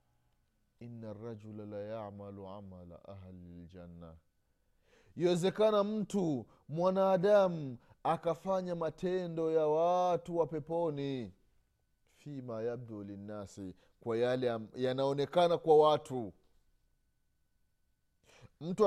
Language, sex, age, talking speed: Swahili, male, 30-49, 85 wpm